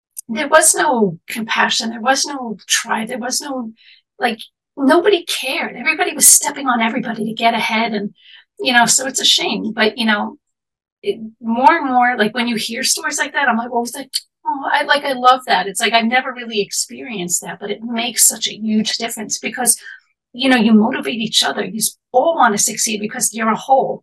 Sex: female